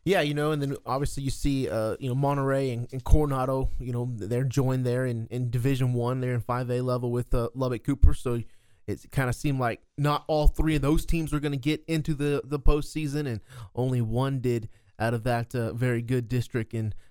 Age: 20-39